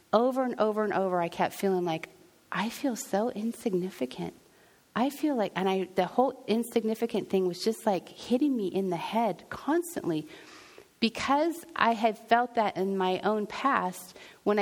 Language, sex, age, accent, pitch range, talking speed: English, female, 40-59, American, 185-240 Hz, 170 wpm